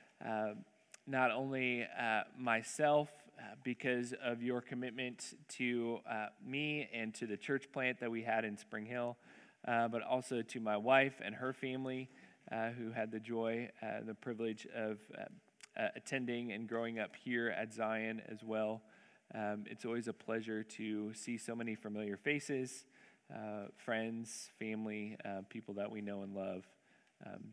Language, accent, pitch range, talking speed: English, American, 110-135 Hz, 165 wpm